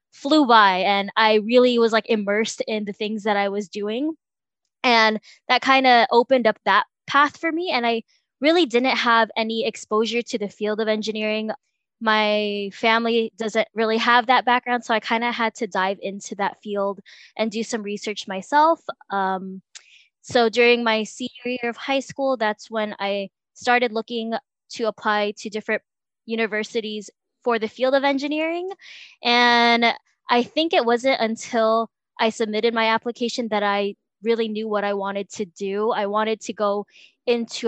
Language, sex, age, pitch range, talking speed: English, female, 10-29, 210-240 Hz, 170 wpm